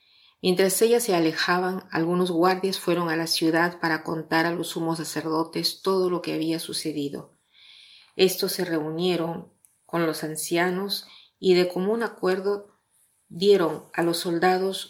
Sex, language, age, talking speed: female, Spanish, 40-59, 140 wpm